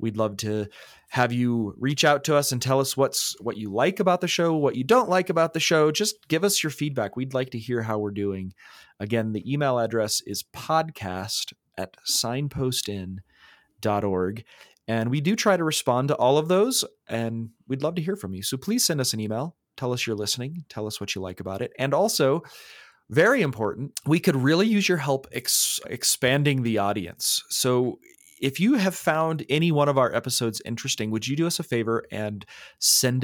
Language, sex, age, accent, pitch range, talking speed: English, male, 30-49, American, 110-160 Hz, 205 wpm